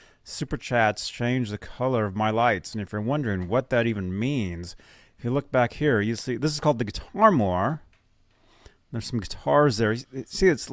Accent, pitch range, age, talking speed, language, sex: American, 100-140 Hz, 30-49, 195 wpm, English, male